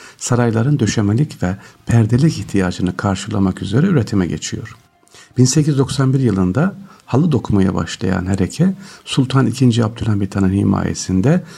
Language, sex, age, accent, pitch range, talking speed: Turkish, male, 50-69, native, 95-140 Hz, 100 wpm